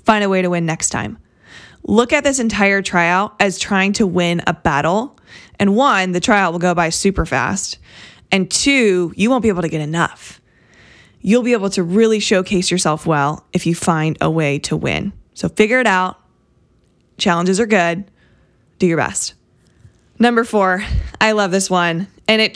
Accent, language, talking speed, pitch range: American, English, 185 wpm, 170-215 Hz